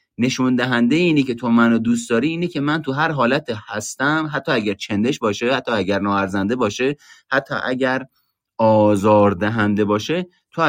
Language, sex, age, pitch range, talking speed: Persian, male, 30-49, 95-120 Hz, 155 wpm